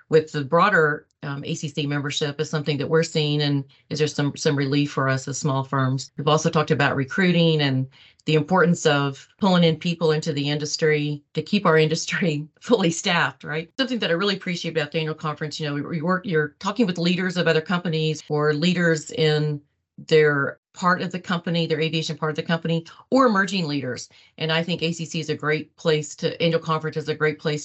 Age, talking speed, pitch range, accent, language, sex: 40-59, 210 wpm, 145-165 Hz, American, English, female